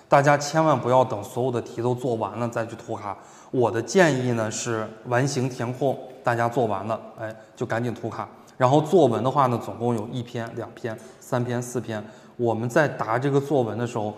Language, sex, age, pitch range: Chinese, male, 20-39, 110-130 Hz